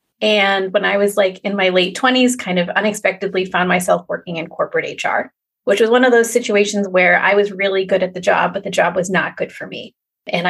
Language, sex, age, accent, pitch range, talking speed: English, female, 30-49, American, 180-240 Hz, 235 wpm